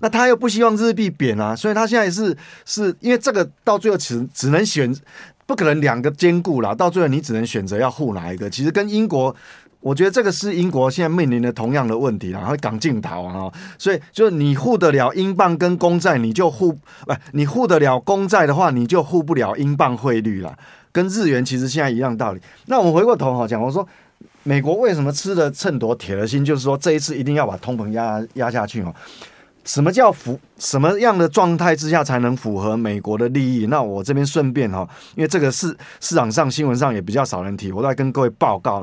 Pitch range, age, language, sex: 115-170 Hz, 30-49, Chinese, male